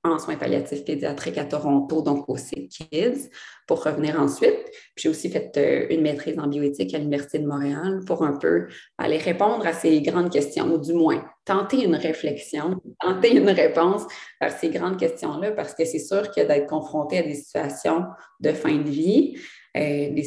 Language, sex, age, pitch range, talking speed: French, female, 30-49, 145-175 Hz, 185 wpm